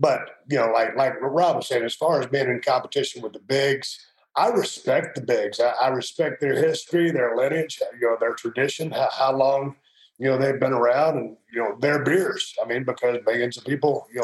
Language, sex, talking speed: English, male, 220 wpm